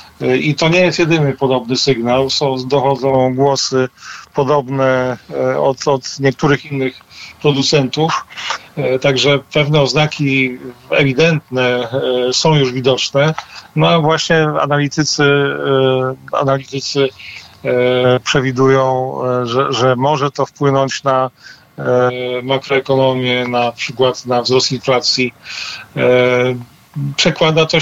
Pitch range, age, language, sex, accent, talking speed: 130-150 Hz, 40-59, Polish, male, native, 90 wpm